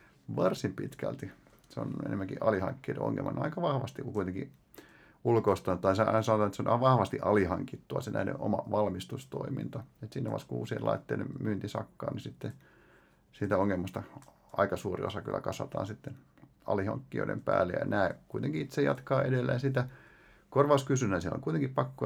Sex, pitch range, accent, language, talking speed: male, 95-135 Hz, native, Finnish, 140 wpm